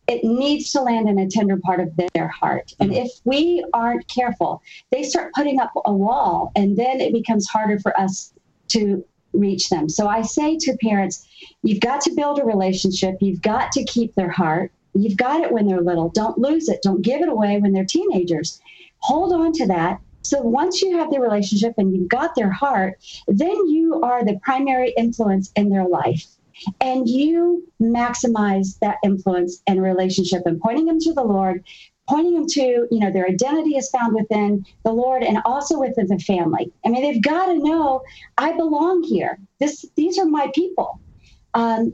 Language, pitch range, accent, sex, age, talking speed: English, 195-280 Hz, American, female, 50-69, 190 wpm